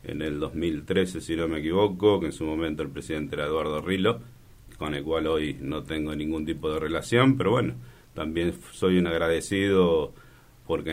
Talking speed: 180 wpm